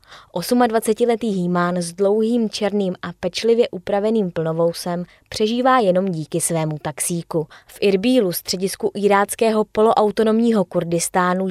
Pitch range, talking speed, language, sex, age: 170-220 Hz, 105 wpm, Czech, female, 20-39